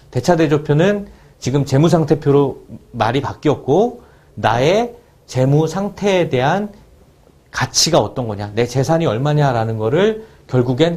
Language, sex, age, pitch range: Korean, male, 40-59, 130-180 Hz